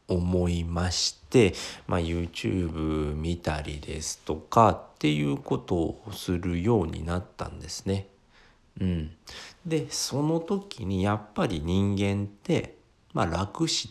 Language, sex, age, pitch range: Japanese, male, 50-69, 80-105 Hz